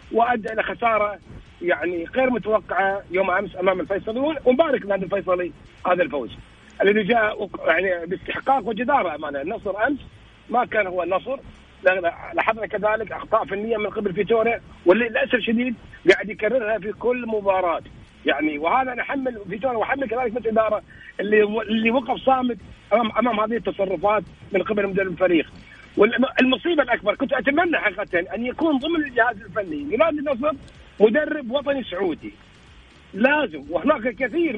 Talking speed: 130 wpm